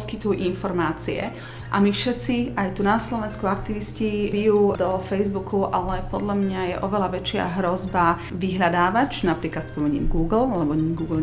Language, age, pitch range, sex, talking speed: Slovak, 40-59, 170-205 Hz, female, 140 wpm